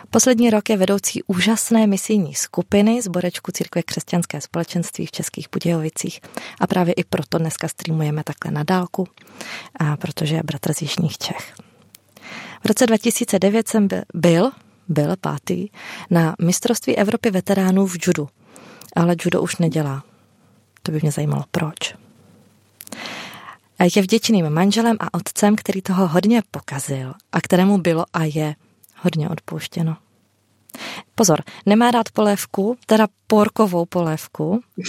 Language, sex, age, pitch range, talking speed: Czech, female, 30-49, 160-210 Hz, 130 wpm